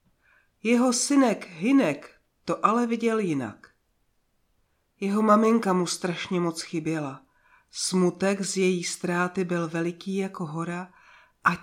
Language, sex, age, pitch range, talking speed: Czech, female, 40-59, 170-220 Hz, 115 wpm